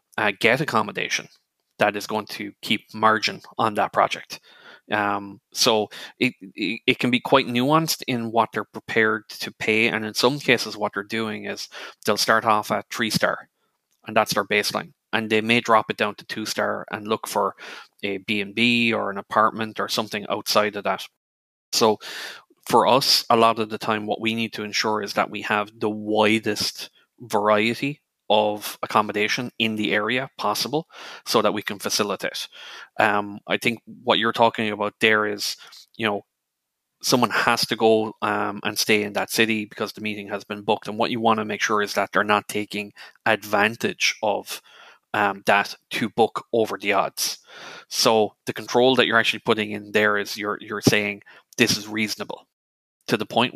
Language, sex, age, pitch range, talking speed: English, male, 20-39, 105-115 Hz, 185 wpm